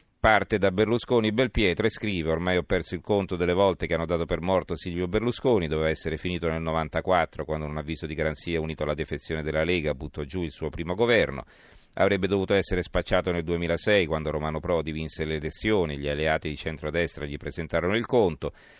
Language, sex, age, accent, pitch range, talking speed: Italian, male, 40-59, native, 80-100 Hz, 195 wpm